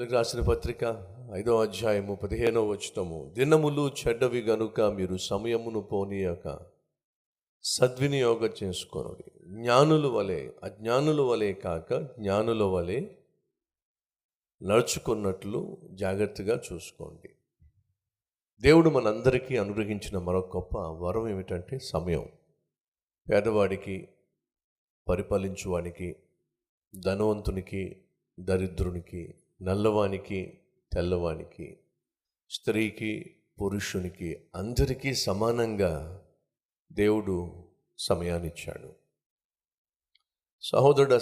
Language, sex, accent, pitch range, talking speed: Telugu, male, native, 95-115 Hz, 65 wpm